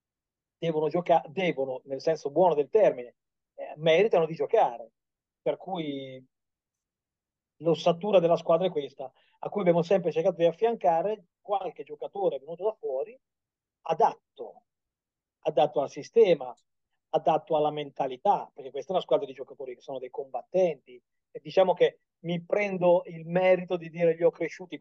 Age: 40-59